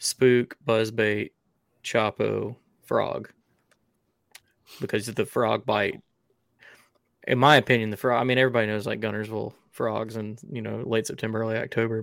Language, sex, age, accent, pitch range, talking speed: English, male, 20-39, American, 105-115 Hz, 140 wpm